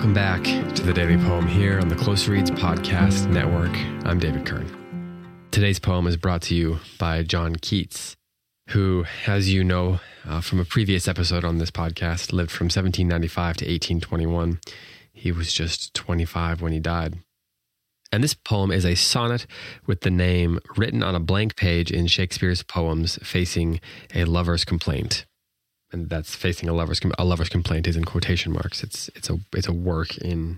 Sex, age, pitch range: male, 20-39, 85-95 Hz